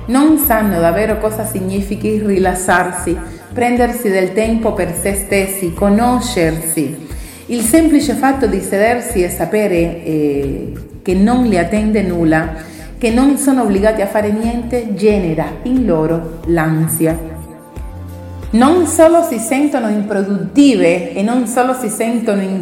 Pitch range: 180-230 Hz